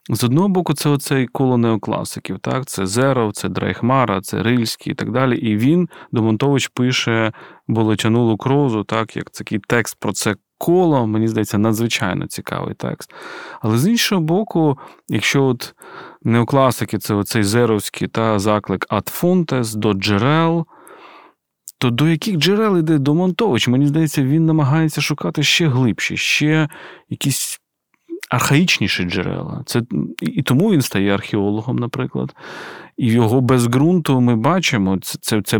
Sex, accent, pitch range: male, native, 110-150 Hz